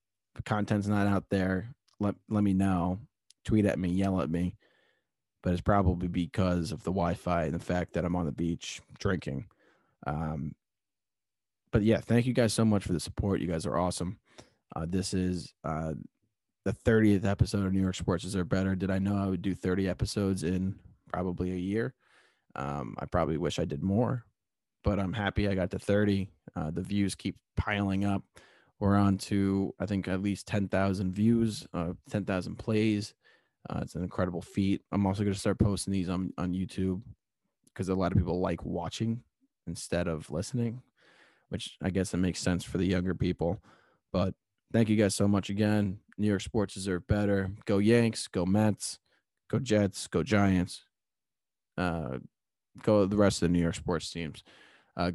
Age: 20-39